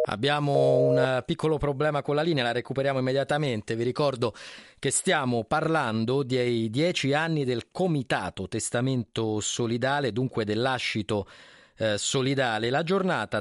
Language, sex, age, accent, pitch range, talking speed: Italian, male, 30-49, native, 110-145 Hz, 120 wpm